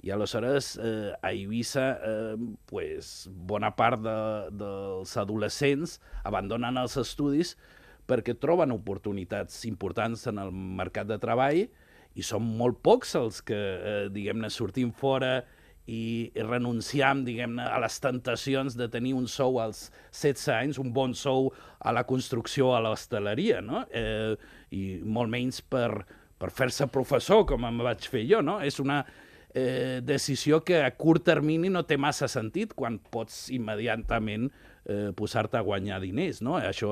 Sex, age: male, 50-69